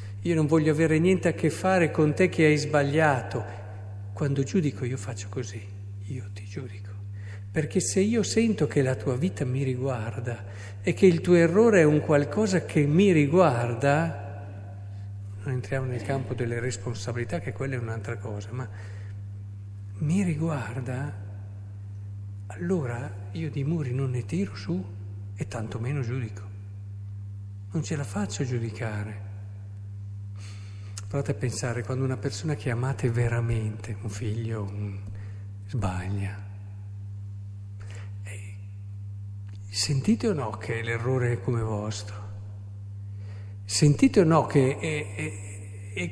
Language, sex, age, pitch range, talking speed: Italian, male, 50-69, 100-140 Hz, 130 wpm